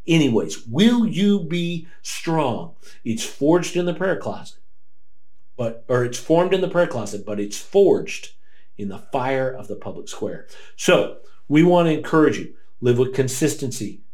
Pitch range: 120-165 Hz